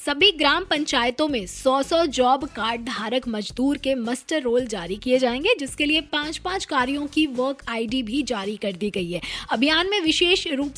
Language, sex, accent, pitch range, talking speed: Hindi, female, native, 245-310 Hz, 190 wpm